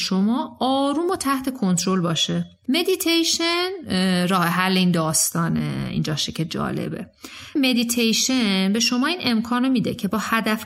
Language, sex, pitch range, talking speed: Persian, female, 190-245 Hz, 130 wpm